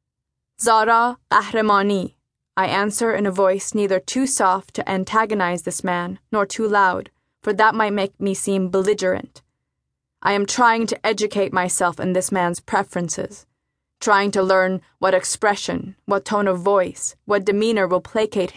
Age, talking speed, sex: 20-39, 150 wpm, female